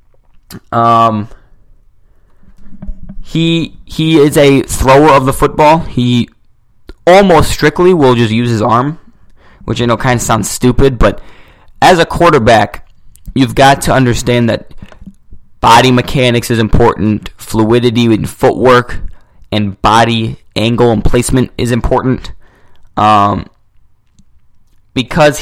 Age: 20-39